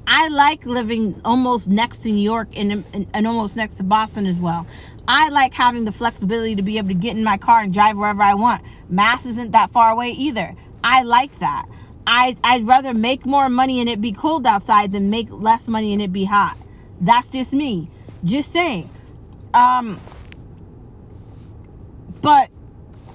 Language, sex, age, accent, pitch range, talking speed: English, female, 30-49, American, 200-260 Hz, 175 wpm